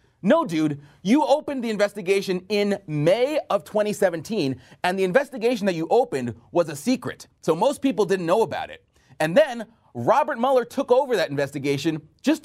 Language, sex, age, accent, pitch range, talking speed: English, male, 30-49, American, 150-250 Hz, 170 wpm